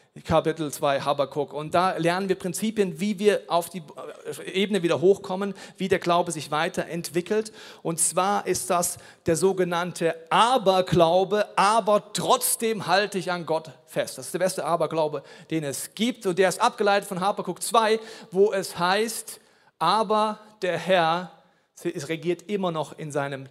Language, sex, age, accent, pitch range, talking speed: German, male, 40-59, German, 160-210 Hz, 155 wpm